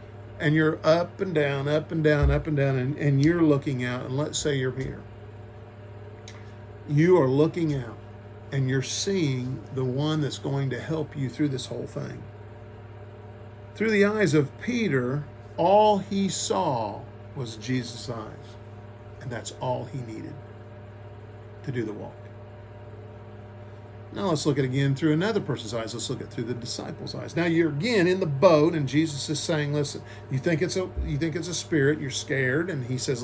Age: 50-69